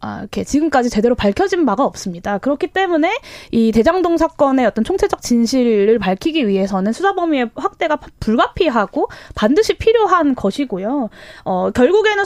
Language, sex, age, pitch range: Korean, female, 20-39, 225-330 Hz